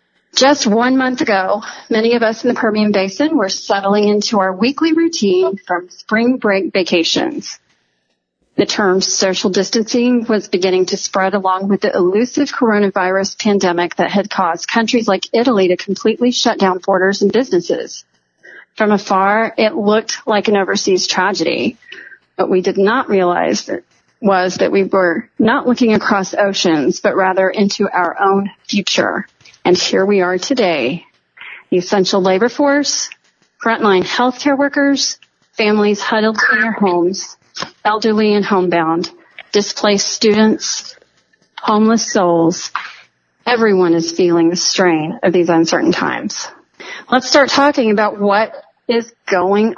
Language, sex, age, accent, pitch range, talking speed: English, female, 40-59, American, 190-235 Hz, 140 wpm